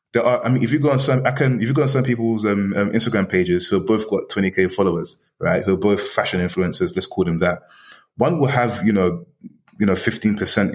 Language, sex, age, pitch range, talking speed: English, male, 20-39, 95-120 Hz, 250 wpm